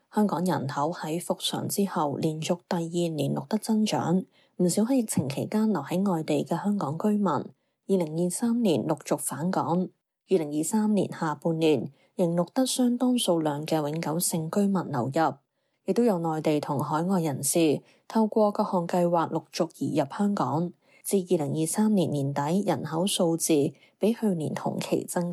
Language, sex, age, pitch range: Chinese, female, 20-39, 160-200 Hz